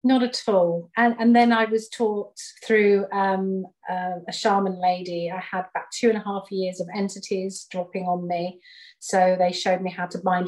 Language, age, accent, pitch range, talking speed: English, 40-59, British, 180-215 Hz, 200 wpm